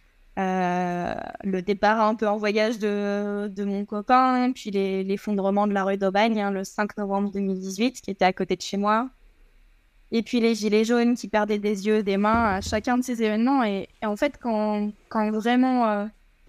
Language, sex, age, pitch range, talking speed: French, female, 20-39, 195-235 Hz, 200 wpm